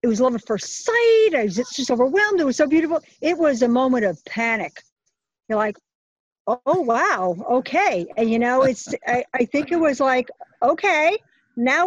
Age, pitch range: 50-69, 220-280 Hz